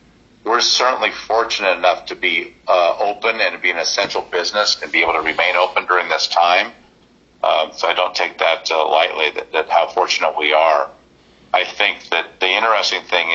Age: 50-69